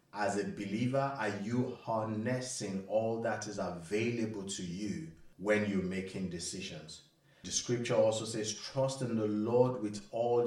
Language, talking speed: English, 150 wpm